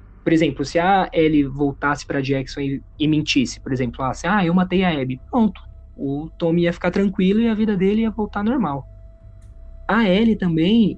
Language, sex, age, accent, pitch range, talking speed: Portuguese, male, 20-39, Brazilian, 145-200 Hz, 190 wpm